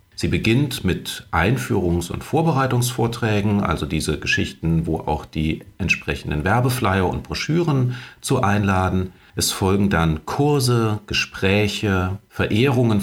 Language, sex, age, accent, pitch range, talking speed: German, male, 50-69, German, 90-115 Hz, 110 wpm